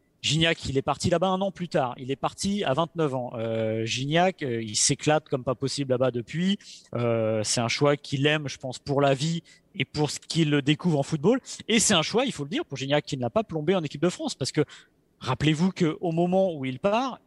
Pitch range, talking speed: 130-180 Hz, 245 wpm